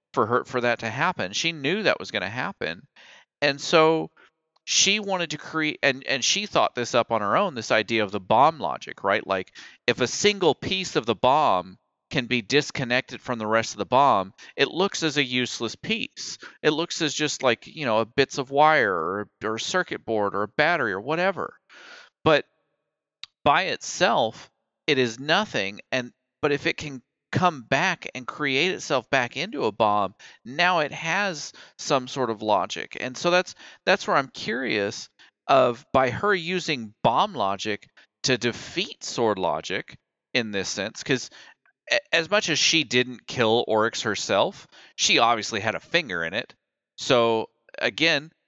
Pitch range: 115-160 Hz